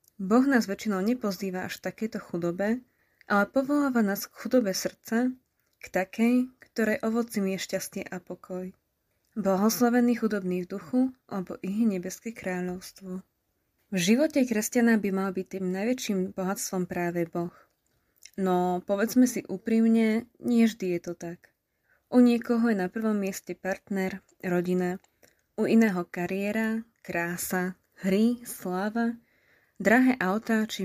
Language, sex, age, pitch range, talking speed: Slovak, female, 20-39, 185-230 Hz, 130 wpm